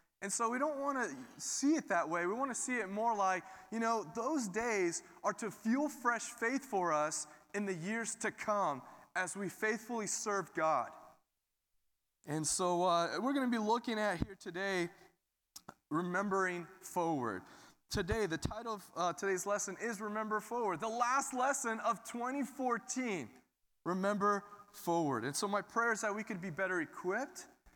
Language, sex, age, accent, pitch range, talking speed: English, male, 20-39, American, 150-215 Hz, 170 wpm